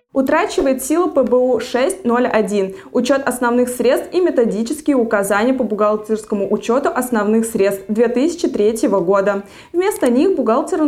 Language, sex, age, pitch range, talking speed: Russian, female, 20-39, 215-295 Hz, 110 wpm